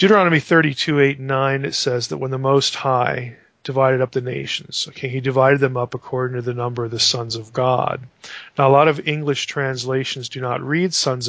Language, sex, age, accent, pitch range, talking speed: English, male, 40-59, American, 130-160 Hz, 205 wpm